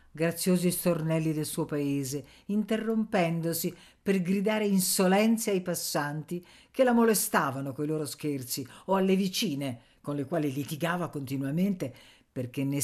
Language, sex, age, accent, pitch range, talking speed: Italian, female, 50-69, native, 135-185 Hz, 125 wpm